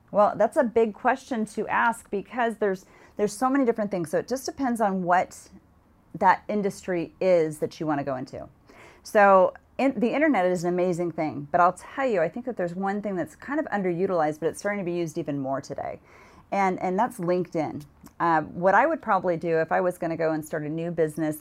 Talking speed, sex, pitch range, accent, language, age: 225 wpm, female, 160-205 Hz, American, English, 40-59